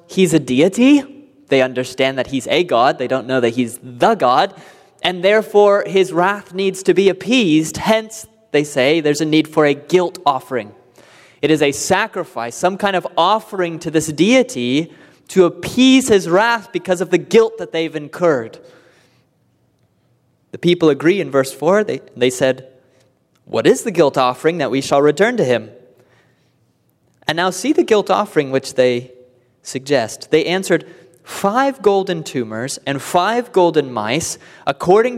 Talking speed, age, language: 160 wpm, 20-39, English